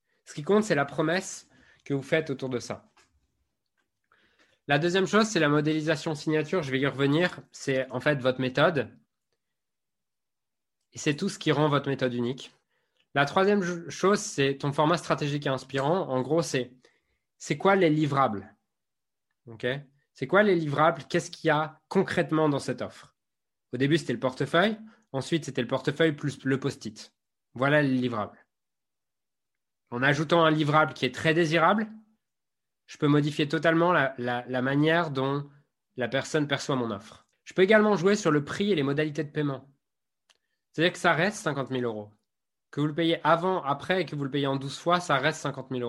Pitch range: 130-165 Hz